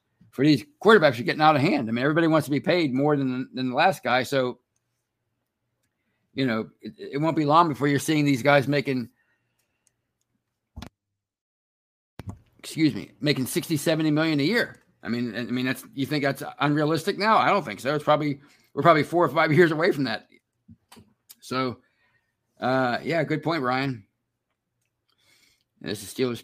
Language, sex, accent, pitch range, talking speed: English, male, American, 125-160 Hz, 175 wpm